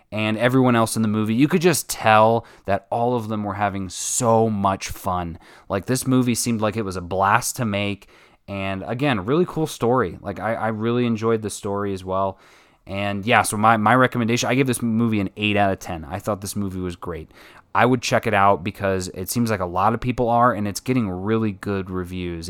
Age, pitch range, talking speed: 20-39, 95-120 Hz, 225 wpm